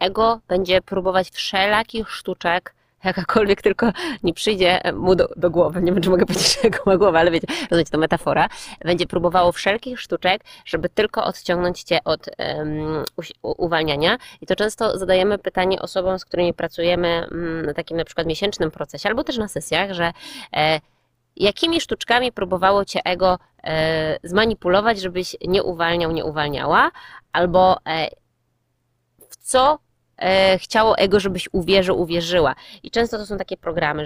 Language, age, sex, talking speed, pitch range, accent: Polish, 20-39, female, 150 wpm, 165-205 Hz, native